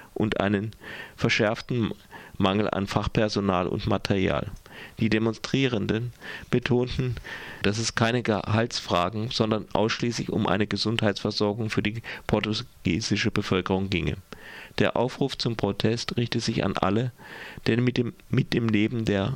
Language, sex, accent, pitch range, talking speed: German, male, German, 100-115 Hz, 125 wpm